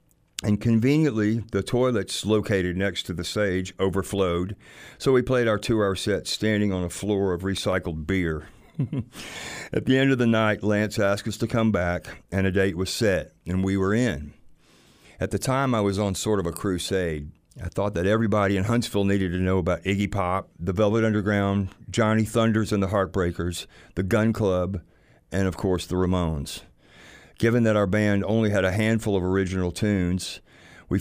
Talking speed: 180 wpm